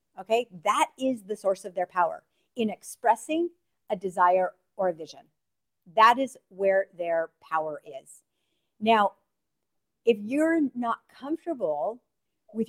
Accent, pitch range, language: American, 180-240 Hz, English